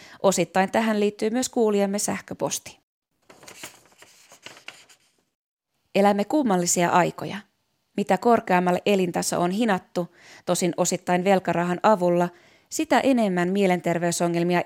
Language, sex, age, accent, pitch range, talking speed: Finnish, female, 20-39, native, 180-225 Hz, 85 wpm